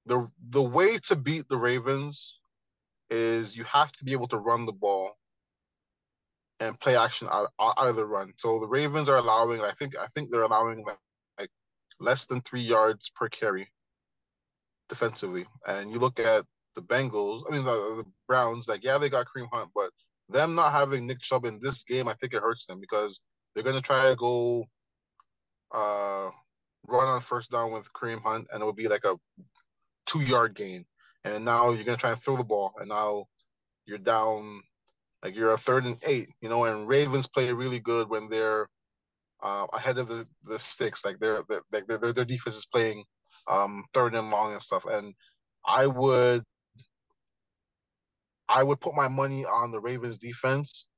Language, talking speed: English, 190 wpm